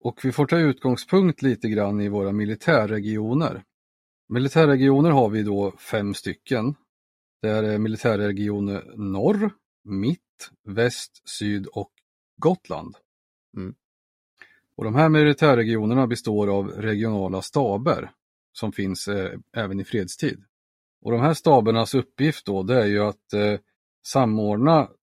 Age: 30-49